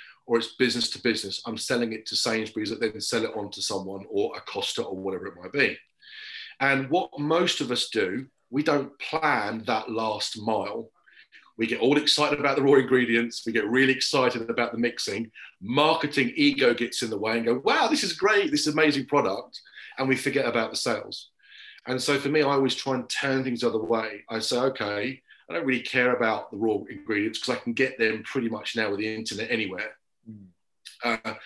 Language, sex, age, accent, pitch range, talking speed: English, male, 40-59, British, 110-135 Hz, 210 wpm